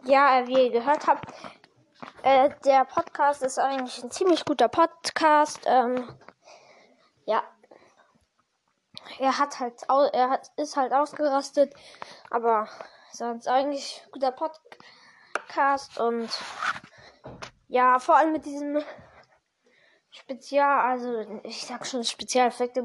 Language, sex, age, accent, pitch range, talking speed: German, female, 10-29, German, 255-295 Hz, 115 wpm